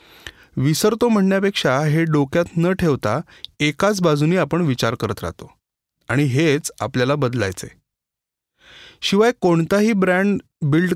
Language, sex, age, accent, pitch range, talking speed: Marathi, male, 30-49, native, 130-180 Hz, 65 wpm